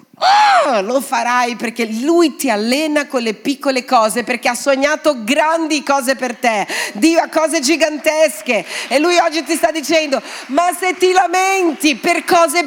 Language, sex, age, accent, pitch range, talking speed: Italian, female, 40-59, native, 225-315 Hz, 155 wpm